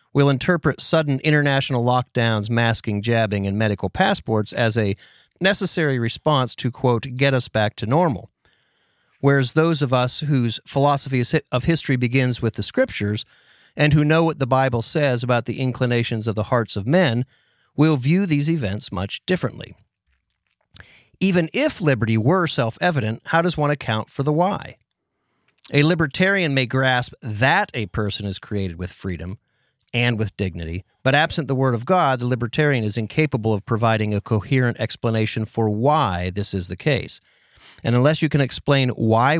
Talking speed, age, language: 165 wpm, 40-59, English